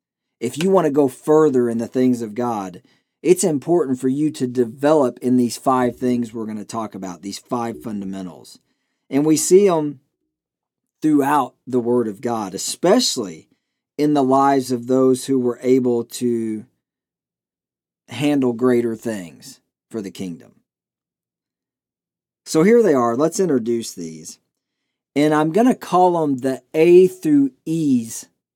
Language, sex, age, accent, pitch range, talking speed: English, male, 40-59, American, 115-155 Hz, 150 wpm